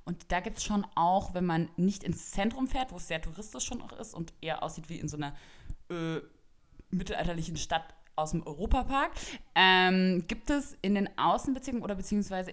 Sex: female